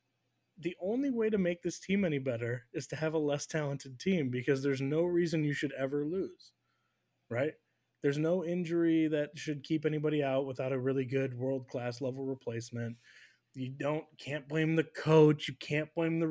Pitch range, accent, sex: 135-170 Hz, American, male